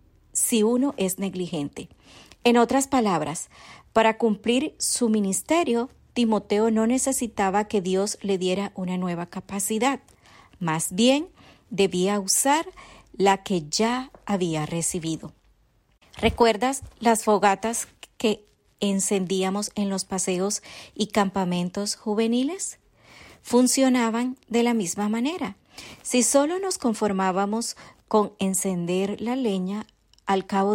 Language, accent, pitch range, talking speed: Spanish, American, 185-235 Hz, 110 wpm